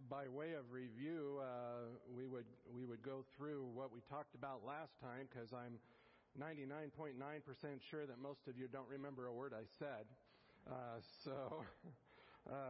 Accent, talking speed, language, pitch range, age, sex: American, 160 wpm, English, 125-155 Hz, 50-69, male